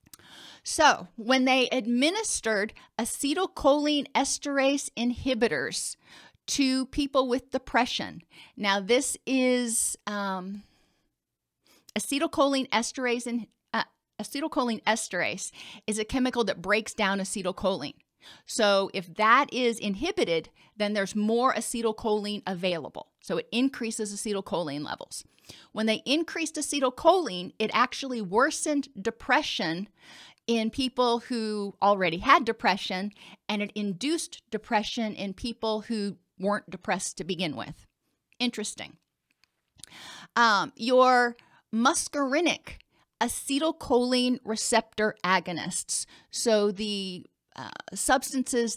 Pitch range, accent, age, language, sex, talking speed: 205-260 Hz, American, 40-59, English, female, 95 wpm